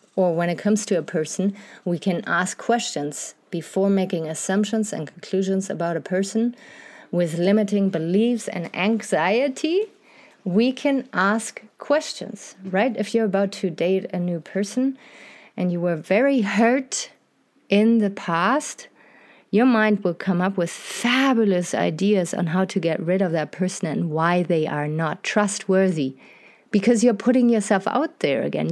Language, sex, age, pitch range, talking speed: English, female, 30-49, 180-225 Hz, 155 wpm